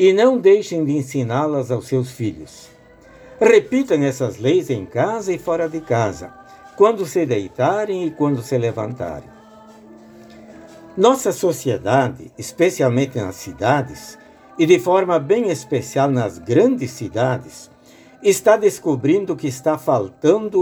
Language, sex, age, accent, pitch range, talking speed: Portuguese, male, 60-79, Brazilian, 125-185 Hz, 120 wpm